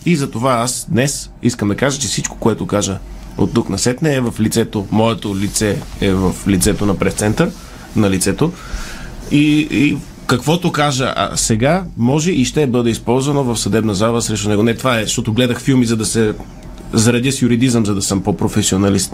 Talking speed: 185 wpm